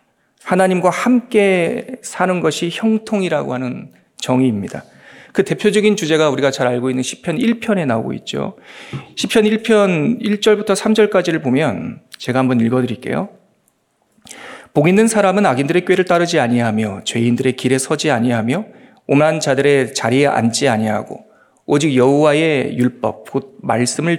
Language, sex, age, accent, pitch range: Korean, male, 40-59, native, 130-195 Hz